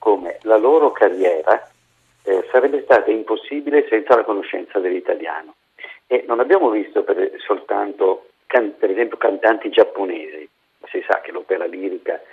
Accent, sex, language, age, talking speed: native, male, Italian, 50-69, 135 wpm